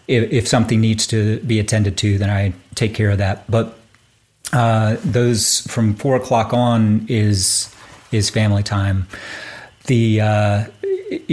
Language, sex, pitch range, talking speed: English, male, 105-125 Hz, 140 wpm